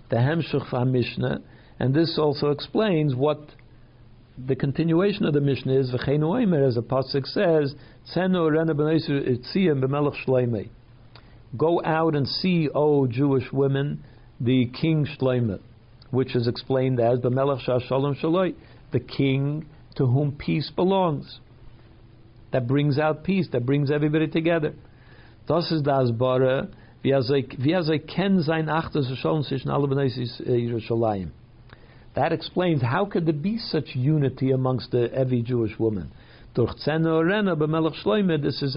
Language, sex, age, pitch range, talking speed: English, male, 60-79, 125-155 Hz, 100 wpm